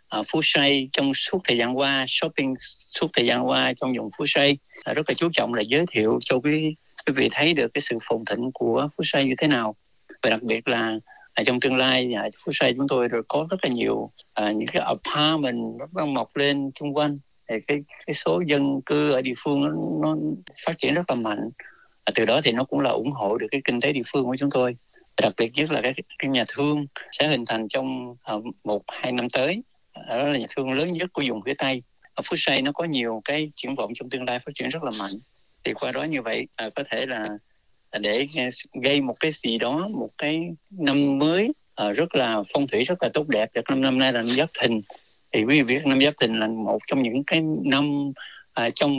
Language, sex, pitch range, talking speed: Vietnamese, male, 125-150 Hz, 245 wpm